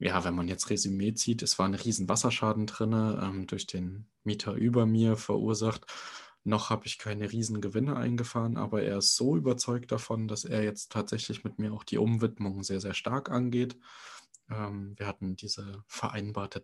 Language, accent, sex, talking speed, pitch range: German, German, male, 175 wpm, 100-110 Hz